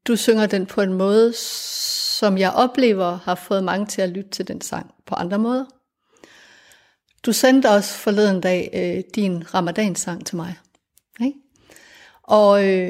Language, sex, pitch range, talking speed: Danish, female, 185-225 Hz, 145 wpm